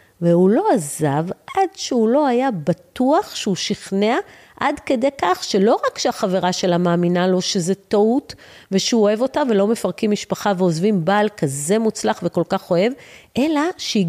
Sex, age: female, 40-59